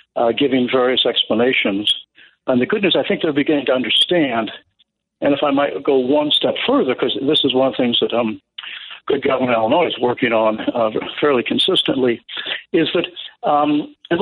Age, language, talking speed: 60-79, English, 180 wpm